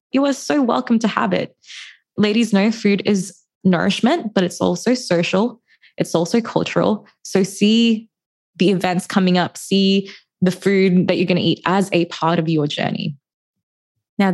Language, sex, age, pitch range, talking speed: English, female, 20-39, 175-220 Hz, 165 wpm